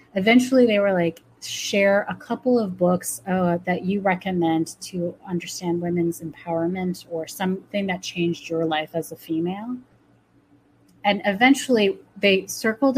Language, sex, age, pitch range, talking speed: English, female, 30-49, 170-205 Hz, 140 wpm